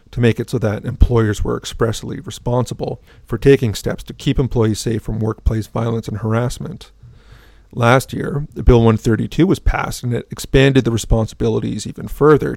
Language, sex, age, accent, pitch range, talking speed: English, male, 40-59, American, 110-130 Hz, 160 wpm